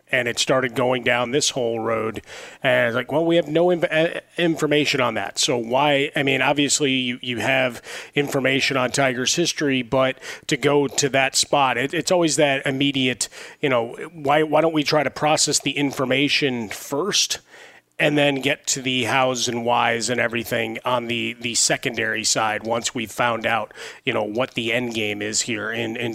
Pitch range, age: 120-145 Hz, 30-49